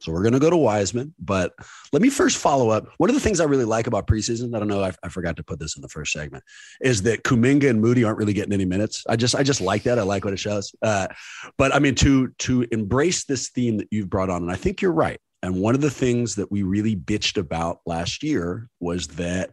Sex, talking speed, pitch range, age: male, 270 wpm, 95-135 Hz, 30-49